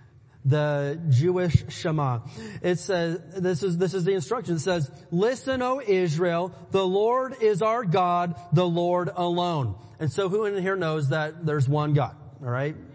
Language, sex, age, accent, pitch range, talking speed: English, male, 40-59, American, 145-200 Hz, 165 wpm